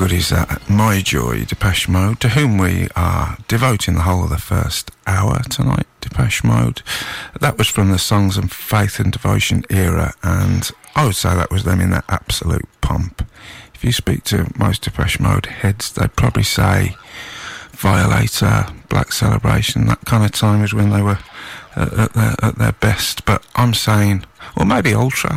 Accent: British